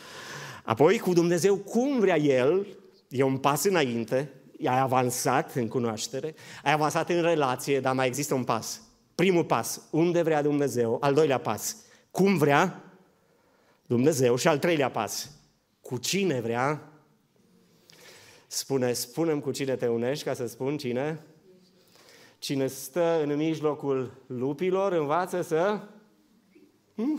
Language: Romanian